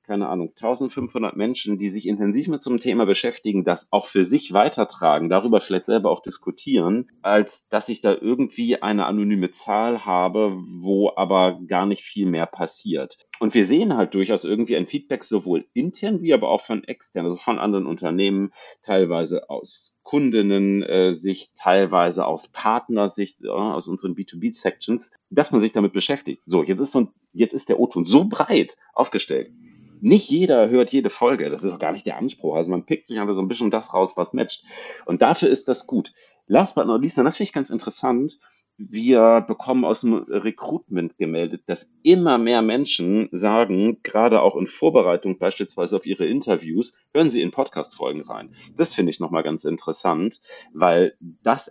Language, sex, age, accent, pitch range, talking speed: German, male, 40-59, German, 95-130 Hz, 180 wpm